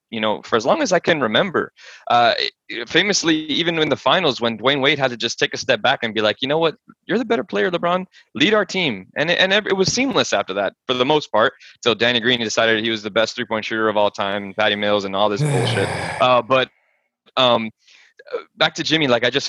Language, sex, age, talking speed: English, male, 20-39, 245 wpm